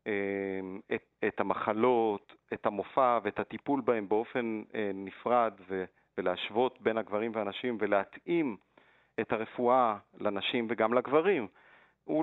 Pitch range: 105-125 Hz